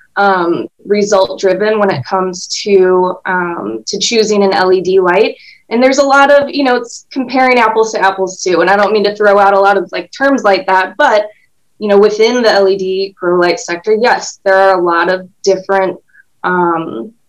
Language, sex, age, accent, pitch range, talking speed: English, female, 20-39, American, 185-220 Hz, 200 wpm